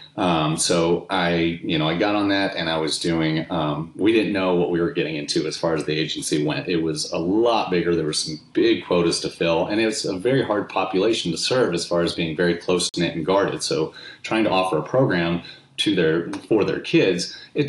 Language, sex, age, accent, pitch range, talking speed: English, male, 30-49, American, 80-95 Hz, 230 wpm